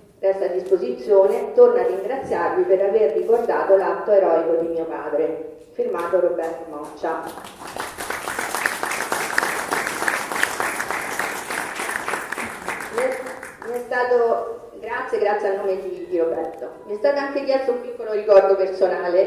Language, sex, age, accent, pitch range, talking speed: Italian, female, 40-59, native, 170-240 Hz, 115 wpm